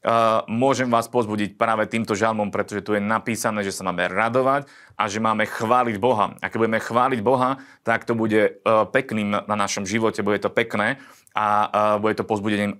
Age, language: 30-49, Slovak